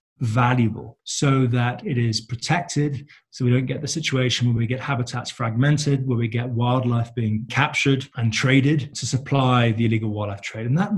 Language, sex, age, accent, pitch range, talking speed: English, male, 20-39, British, 115-135 Hz, 180 wpm